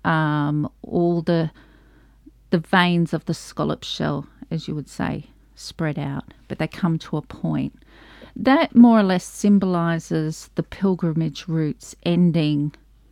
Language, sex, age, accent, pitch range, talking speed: English, female, 40-59, Australian, 155-195 Hz, 135 wpm